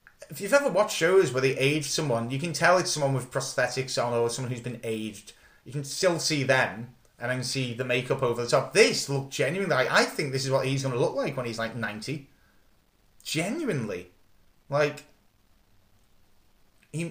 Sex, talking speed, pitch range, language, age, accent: male, 195 wpm, 115-140 Hz, English, 30-49, British